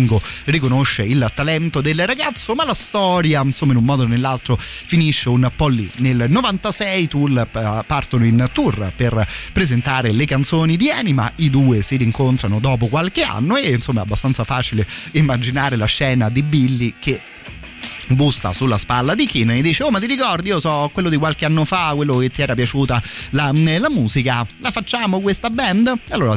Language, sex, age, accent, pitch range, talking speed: Italian, male, 30-49, native, 115-150 Hz, 180 wpm